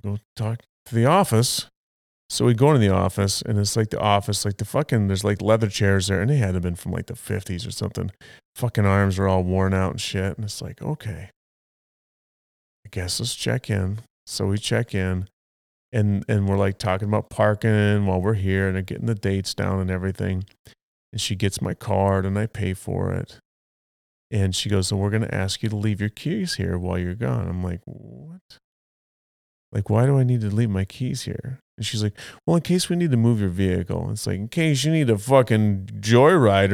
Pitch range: 95-115 Hz